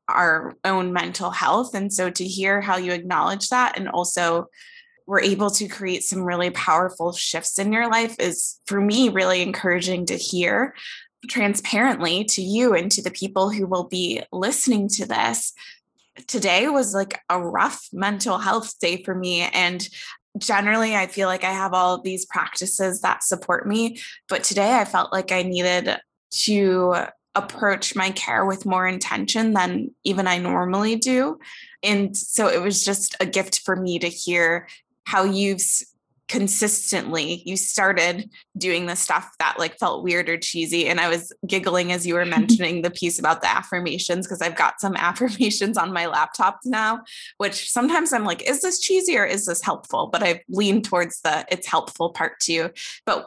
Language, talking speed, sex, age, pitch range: English, 175 wpm, female, 20-39, 180-210 Hz